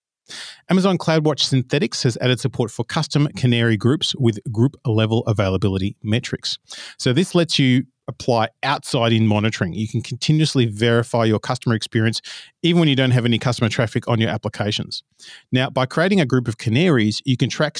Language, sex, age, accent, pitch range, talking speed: English, male, 40-59, Australian, 115-135 Hz, 170 wpm